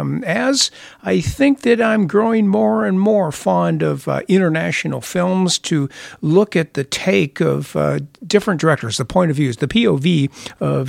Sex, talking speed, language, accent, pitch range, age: male, 165 wpm, English, American, 130-200 Hz, 60-79